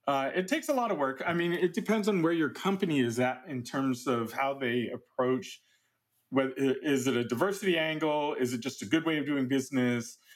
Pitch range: 120-160 Hz